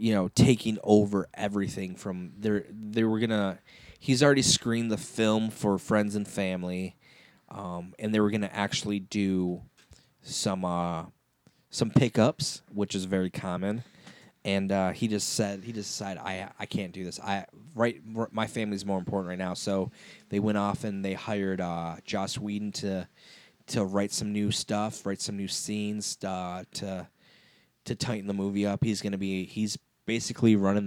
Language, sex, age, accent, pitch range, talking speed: English, male, 20-39, American, 95-115 Hz, 175 wpm